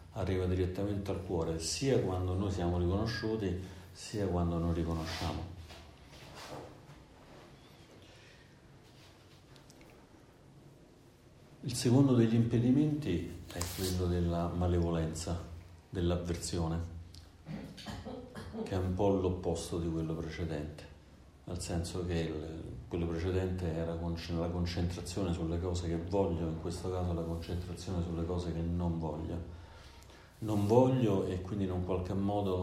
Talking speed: 110 wpm